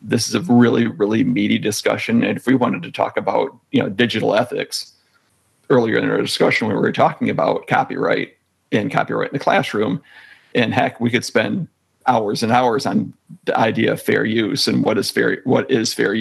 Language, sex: English, male